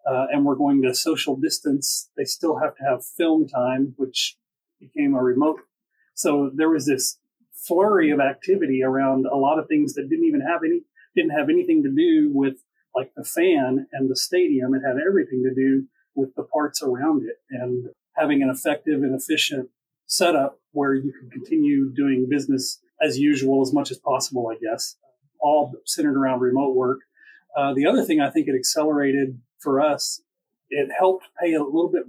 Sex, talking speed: male, 185 wpm